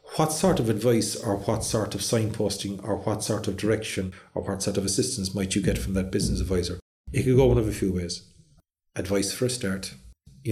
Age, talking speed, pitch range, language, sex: 40-59, 220 wpm, 95-115 Hz, English, male